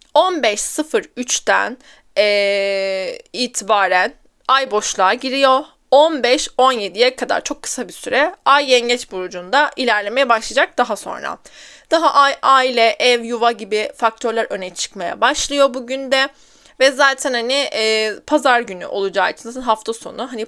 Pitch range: 220-275 Hz